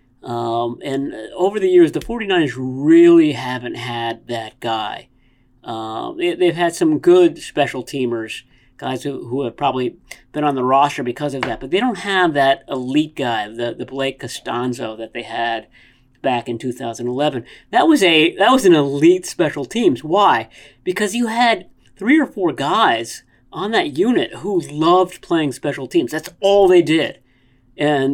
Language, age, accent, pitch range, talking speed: English, 40-59, American, 125-195 Hz, 170 wpm